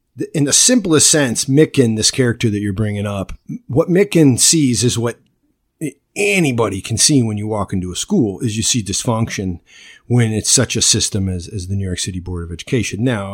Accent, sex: American, male